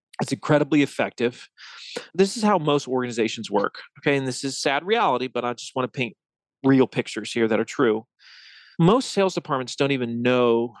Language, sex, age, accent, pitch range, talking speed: English, male, 30-49, American, 125-160 Hz, 180 wpm